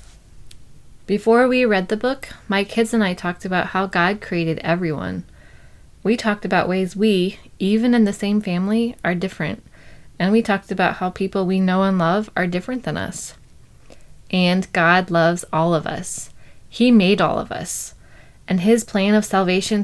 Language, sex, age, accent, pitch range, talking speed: English, female, 20-39, American, 170-205 Hz, 170 wpm